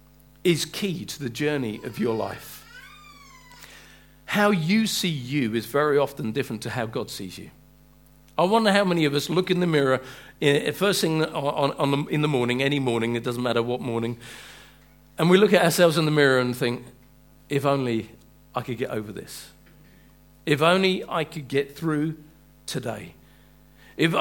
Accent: British